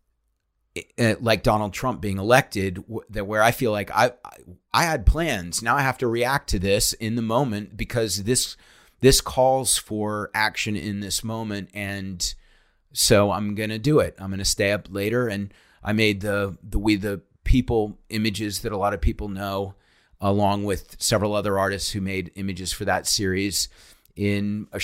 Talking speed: 175 wpm